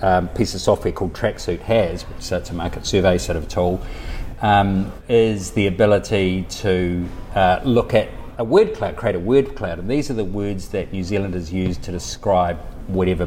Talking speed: 190 wpm